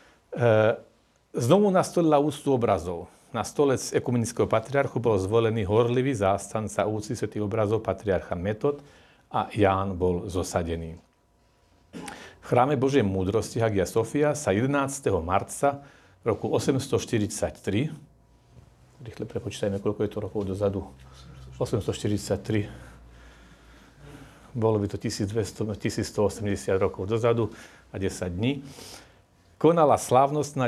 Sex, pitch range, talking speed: male, 100-125 Hz, 100 wpm